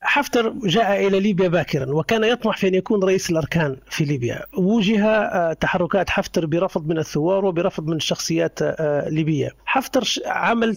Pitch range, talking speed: 170-220 Hz, 145 wpm